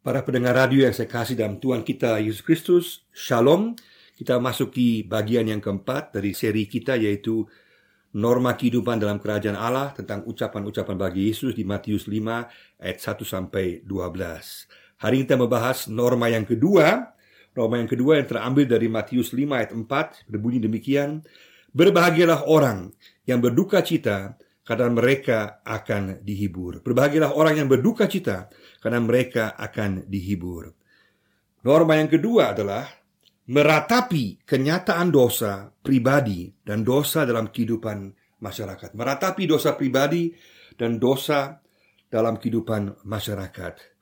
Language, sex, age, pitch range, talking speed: Indonesian, male, 50-69, 105-140 Hz, 125 wpm